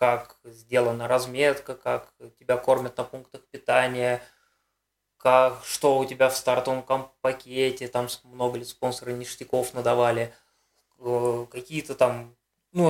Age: 20-39